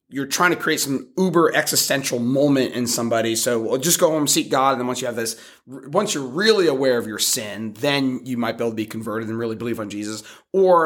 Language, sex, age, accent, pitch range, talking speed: English, male, 30-49, American, 115-145 Hz, 245 wpm